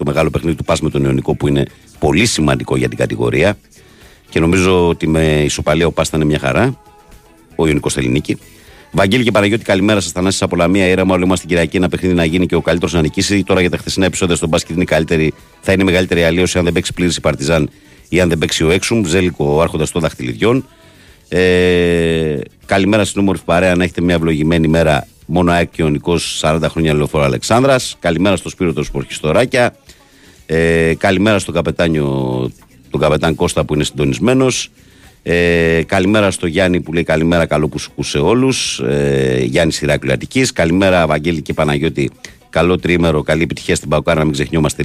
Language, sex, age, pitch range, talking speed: Greek, male, 50-69, 75-90 Hz, 175 wpm